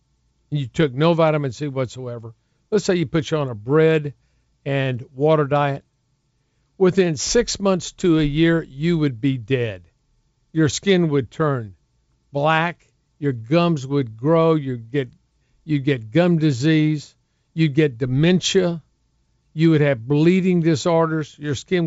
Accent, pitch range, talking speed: American, 135-170 Hz, 140 wpm